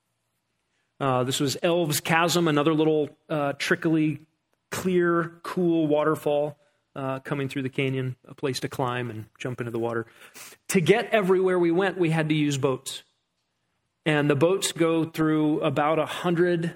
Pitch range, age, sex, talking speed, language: 145-185 Hz, 30-49, male, 155 wpm, English